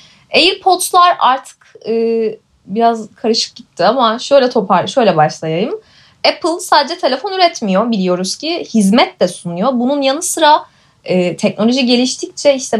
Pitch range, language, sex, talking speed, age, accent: 205-285 Hz, Turkish, female, 125 wpm, 20-39, native